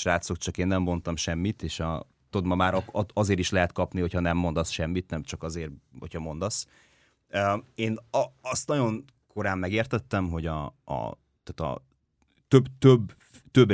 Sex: male